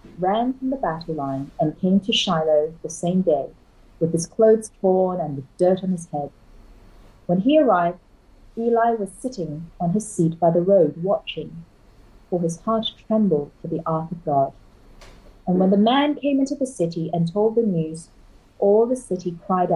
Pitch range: 160-230 Hz